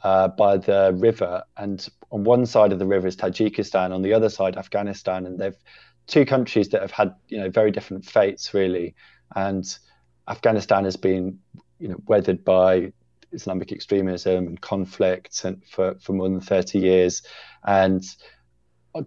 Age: 20-39